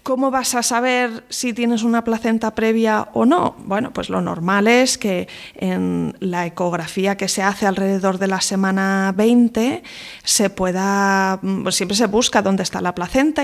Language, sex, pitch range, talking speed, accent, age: Spanish, female, 190-235 Hz, 170 wpm, Spanish, 20-39